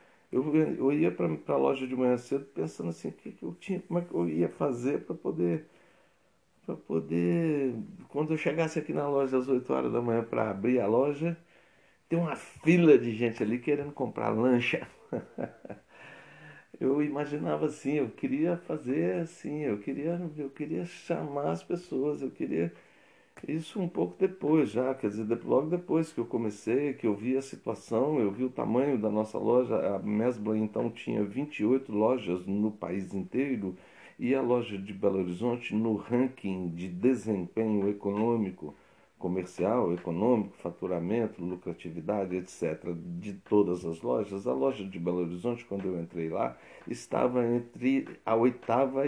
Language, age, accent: Portuguese, 60-79, Brazilian